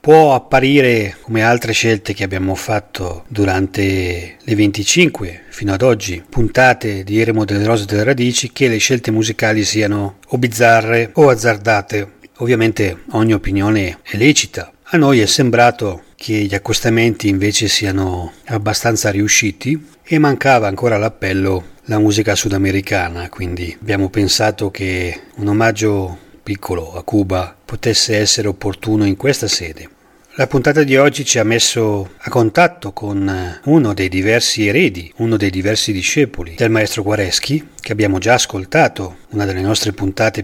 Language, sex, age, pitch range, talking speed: Italian, male, 40-59, 95-115 Hz, 145 wpm